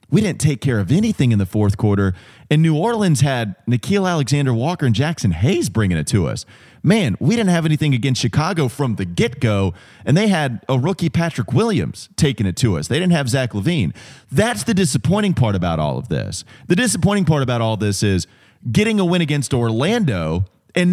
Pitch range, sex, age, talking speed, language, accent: 115-180 Hz, male, 30-49, 205 wpm, English, American